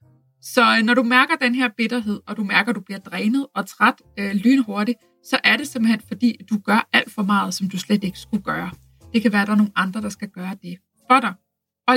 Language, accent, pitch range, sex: Danish, native, 195-245 Hz, female